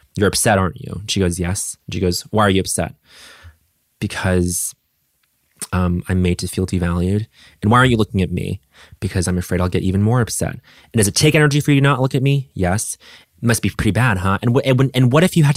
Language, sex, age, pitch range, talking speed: English, male, 20-39, 95-140 Hz, 245 wpm